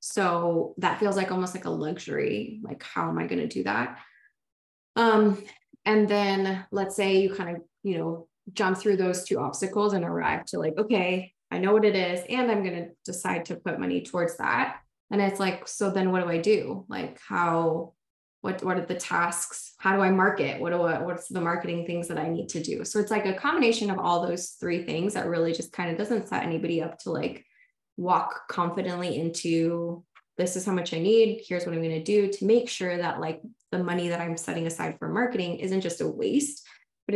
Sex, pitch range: female, 165-205 Hz